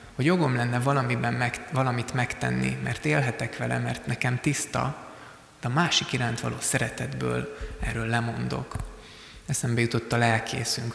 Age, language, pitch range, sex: 20-39, Hungarian, 115-135 Hz, male